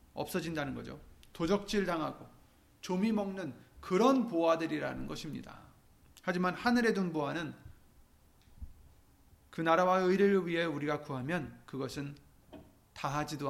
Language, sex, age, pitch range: Korean, male, 30-49, 130-180 Hz